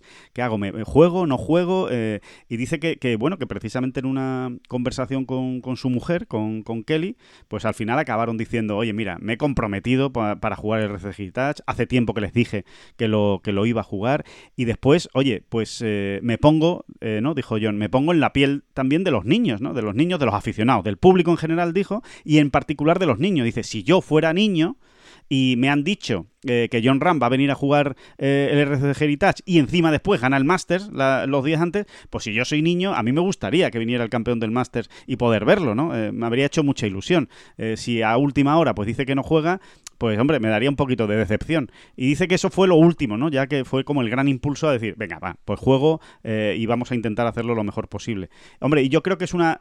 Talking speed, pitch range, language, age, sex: 245 wpm, 115-155 Hz, Spanish, 30-49, male